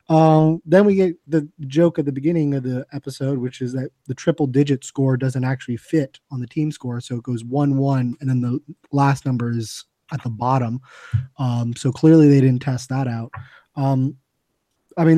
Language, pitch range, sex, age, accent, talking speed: English, 130-155 Hz, male, 20-39, American, 200 wpm